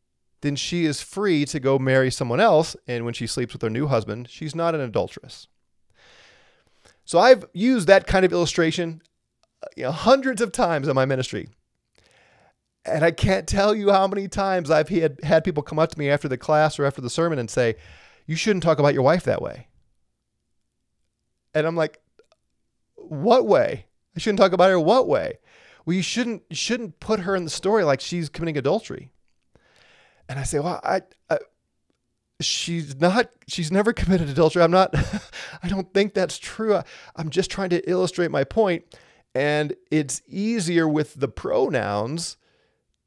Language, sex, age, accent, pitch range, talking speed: English, male, 30-49, American, 140-185 Hz, 175 wpm